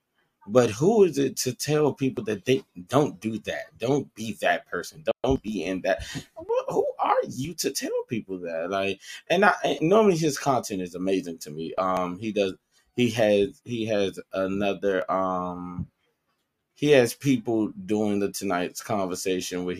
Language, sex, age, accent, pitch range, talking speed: English, male, 20-39, American, 95-150 Hz, 165 wpm